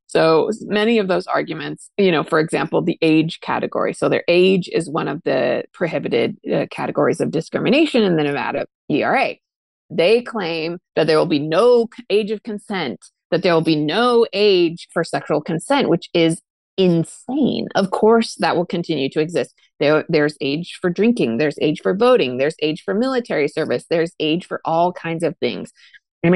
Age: 30-49